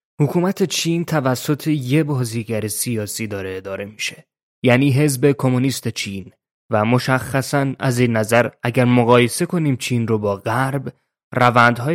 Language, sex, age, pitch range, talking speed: Persian, male, 20-39, 110-135 Hz, 130 wpm